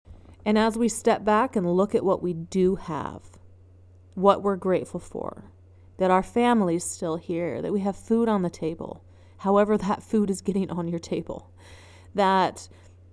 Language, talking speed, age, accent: English, 175 wpm, 30-49, American